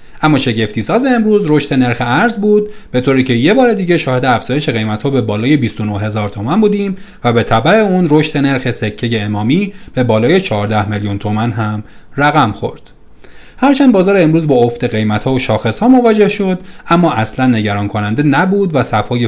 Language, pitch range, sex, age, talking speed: Persian, 115-170 Hz, male, 30-49, 175 wpm